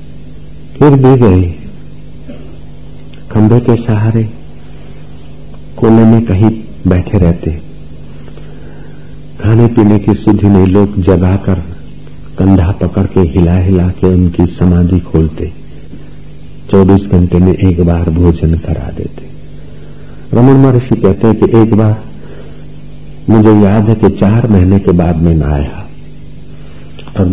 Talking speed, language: 120 wpm, Hindi